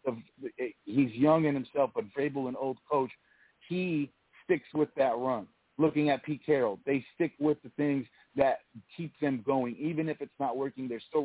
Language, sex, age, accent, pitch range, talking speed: English, male, 40-59, American, 120-140 Hz, 180 wpm